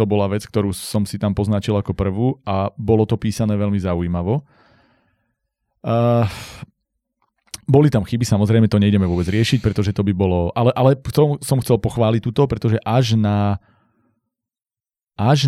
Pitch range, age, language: 105-125 Hz, 30-49, Slovak